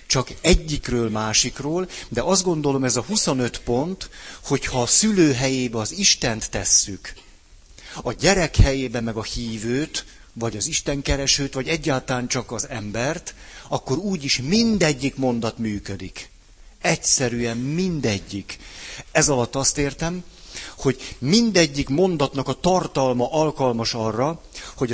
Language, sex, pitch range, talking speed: Hungarian, male, 105-140 Hz, 120 wpm